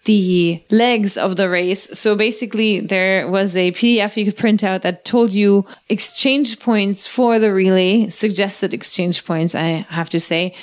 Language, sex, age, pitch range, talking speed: English, female, 30-49, 190-225 Hz, 170 wpm